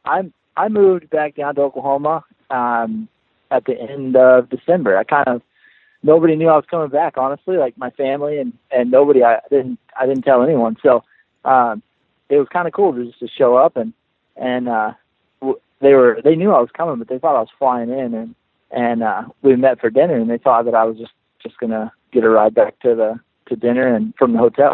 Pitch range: 120-150 Hz